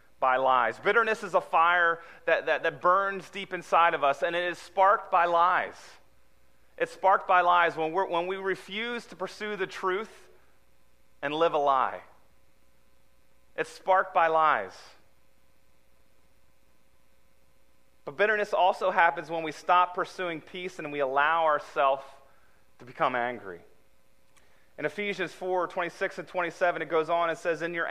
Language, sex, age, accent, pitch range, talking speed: English, male, 30-49, American, 130-185 Hz, 150 wpm